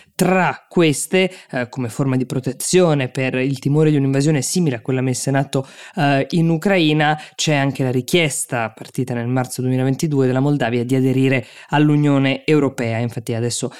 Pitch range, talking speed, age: 125-150 Hz, 160 wpm, 20-39